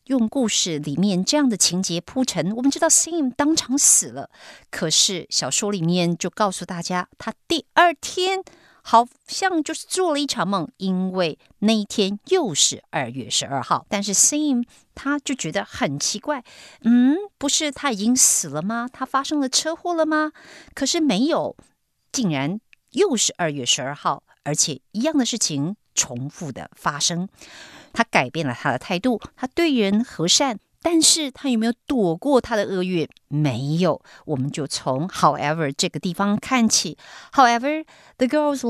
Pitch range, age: 165-280 Hz, 50-69